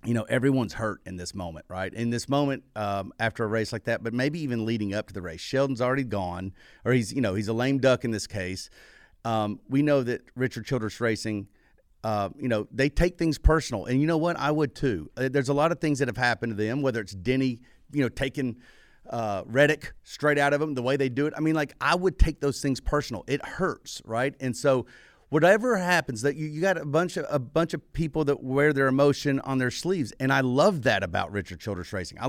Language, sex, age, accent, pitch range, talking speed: English, male, 40-59, American, 115-160 Hz, 240 wpm